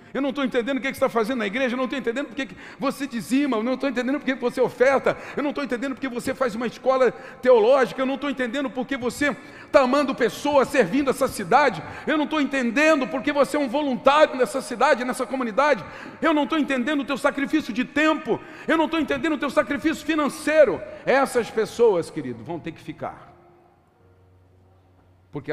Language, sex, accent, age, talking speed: Portuguese, male, Brazilian, 40-59, 205 wpm